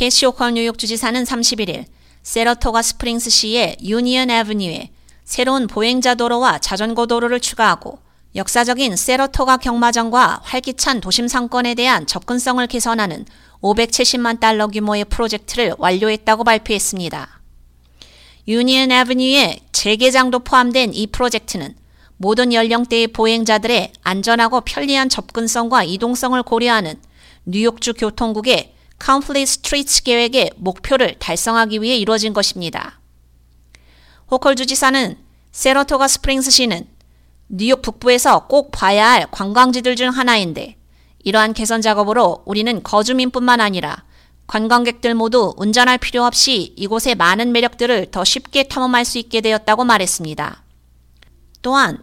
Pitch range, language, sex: 210-250 Hz, Korean, female